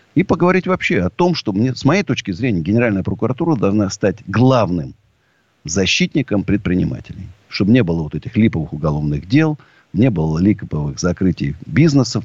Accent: native